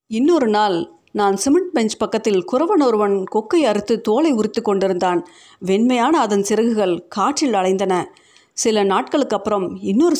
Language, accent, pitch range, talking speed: Tamil, native, 190-255 Hz, 110 wpm